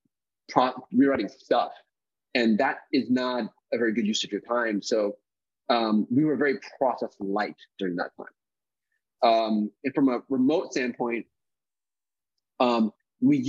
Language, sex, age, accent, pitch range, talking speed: English, male, 30-49, American, 110-140 Hz, 140 wpm